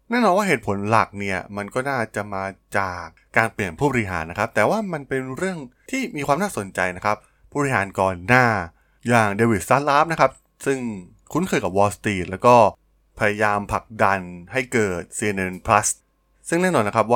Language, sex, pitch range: Thai, male, 100-130 Hz